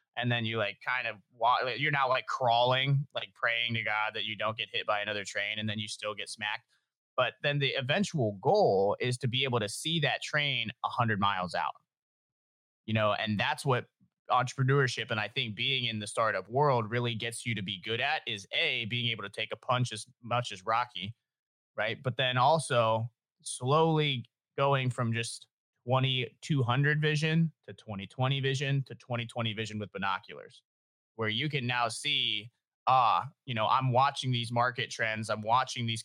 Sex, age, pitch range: male, 30-49, 110-130 Hz